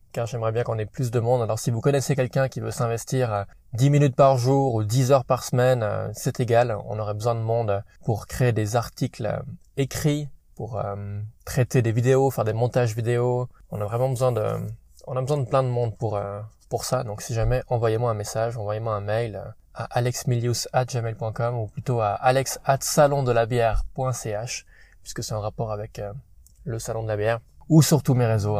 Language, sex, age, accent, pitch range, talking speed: French, male, 20-39, French, 110-130 Hz, 195 wpm